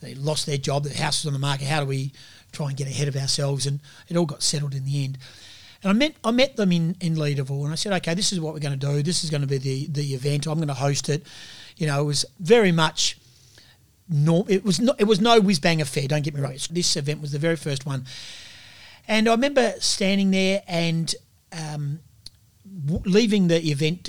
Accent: Australian